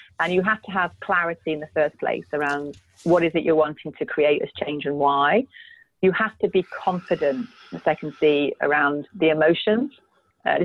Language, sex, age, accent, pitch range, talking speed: English, female, 40-59, British, 150-205 Hz, 195 wpm